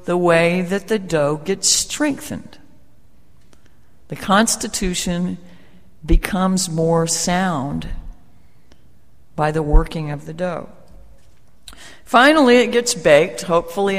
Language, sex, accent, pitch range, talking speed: English, female, American, 150-185 Hz, 100 wpm